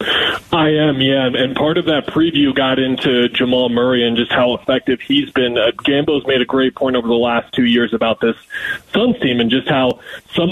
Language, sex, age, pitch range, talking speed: English, male, 20-39, 130-160 Hz, 210 wpm